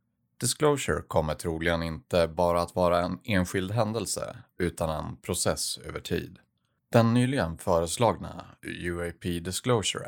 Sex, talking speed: male, 120 wpm